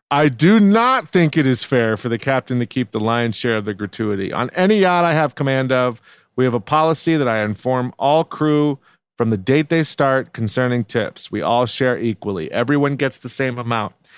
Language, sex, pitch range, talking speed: English, male, 115-150 Hz, 210 wpm